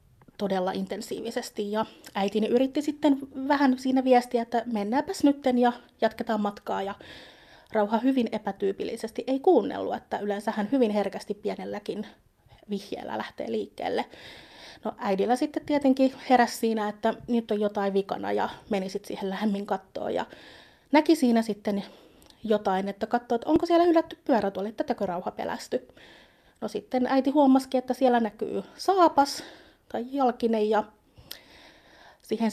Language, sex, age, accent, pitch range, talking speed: Finnish, female, 30-49, native, 205-265 Hz, 130 wpm